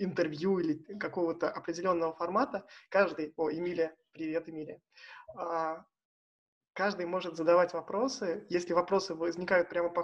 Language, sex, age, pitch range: Russian, male, 20-39, 170-195 Hz